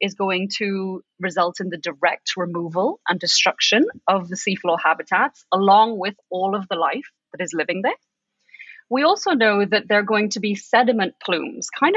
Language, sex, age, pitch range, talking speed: English, female, 30-49, 185-255 Hz, 180 wpm